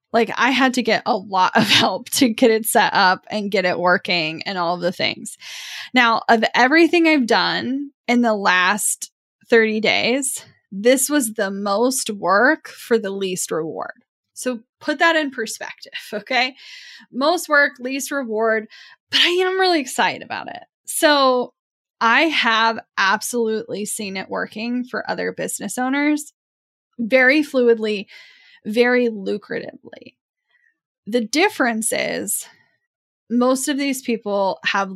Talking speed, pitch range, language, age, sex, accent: 140 wpm, 210-285 Hz, English, 10-29, female, American